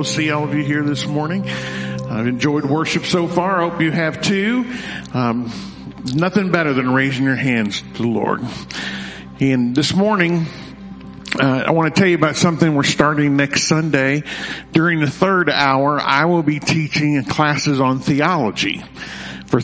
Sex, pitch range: male, 130-160 Hz